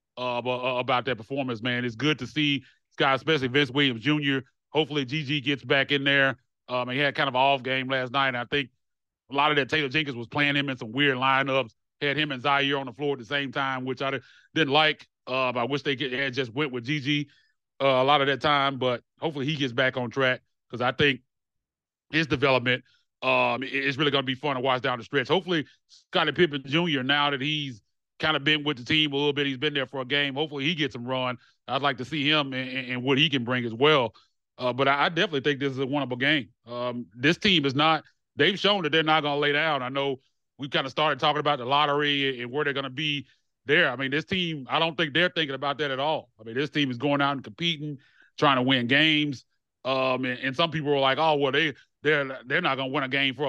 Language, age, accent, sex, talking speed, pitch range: English, 30-49, American, male, 260 wpm, 130-150 Hz